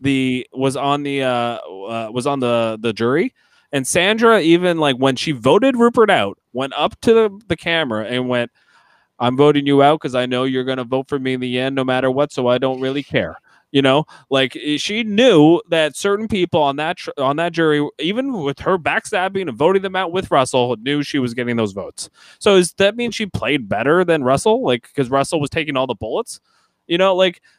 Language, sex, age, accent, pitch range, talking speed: English, male, 20-39, American, 125-175 Hz, 220 wpm